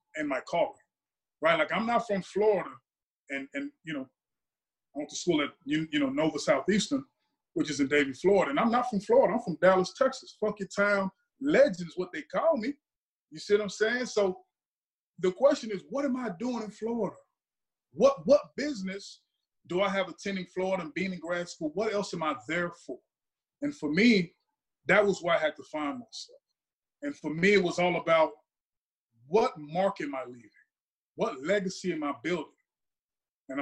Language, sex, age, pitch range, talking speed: English, male, 30-49, 155-245 Hz, 195 wpm